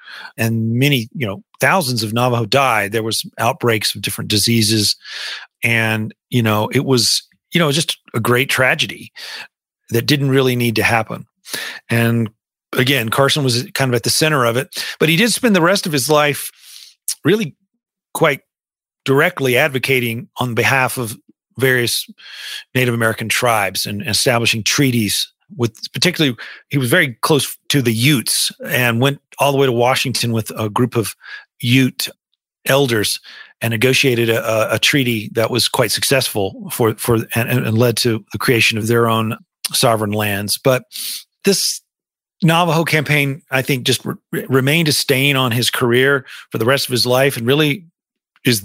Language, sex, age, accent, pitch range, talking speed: English, male, 40-59, American, 115-140 Hz, 165 wpm